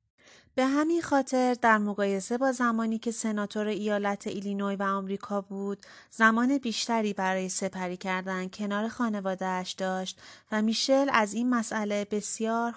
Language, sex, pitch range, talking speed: Persian, female, 190-240 Hz, 130 wpm